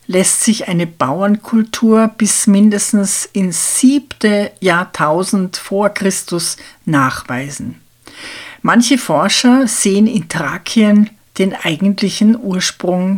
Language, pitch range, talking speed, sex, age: German, 175-220 Hz, 90 wpm, female, 60-79